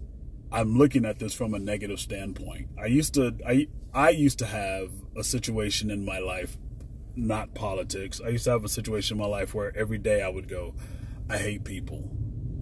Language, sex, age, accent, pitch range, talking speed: English, male, 30-49, American, 100-125 Hz, 195 wpm